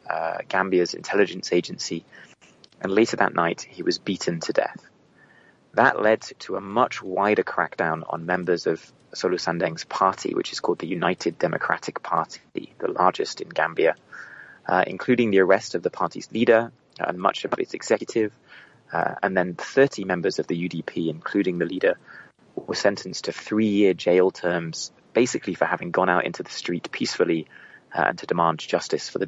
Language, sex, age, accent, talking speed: English, male, 20-39, British, 170 wpm